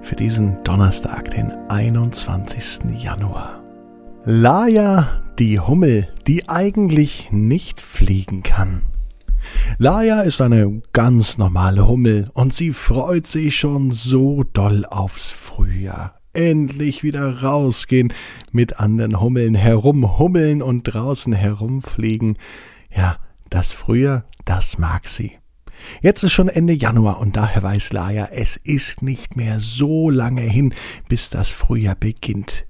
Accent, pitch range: German, 100-135 Hz